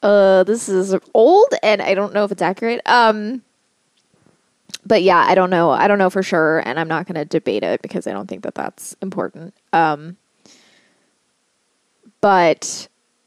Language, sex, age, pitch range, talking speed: English, female, 20-39, 170-210 Hz, 170 wpm